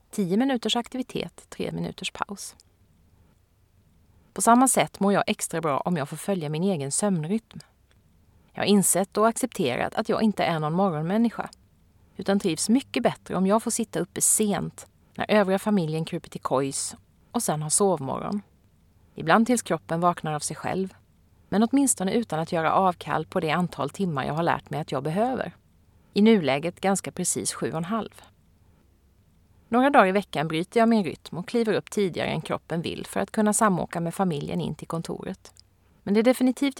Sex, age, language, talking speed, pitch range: female, 30-49, Swedish, 180 wpm, 145-210 Hz